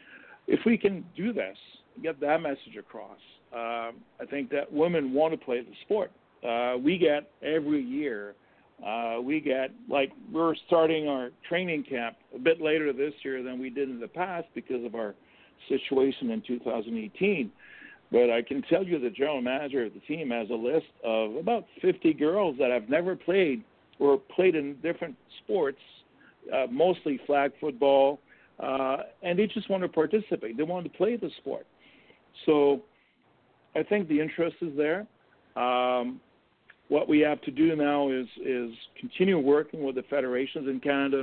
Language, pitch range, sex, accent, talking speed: English, 125-170 Hz, male, American, 170 wpm